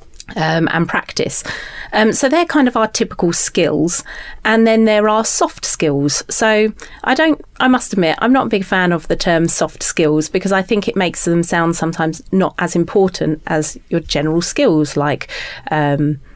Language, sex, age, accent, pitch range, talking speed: English, female, 30-49, British, 155-215 Hz, 185 wpm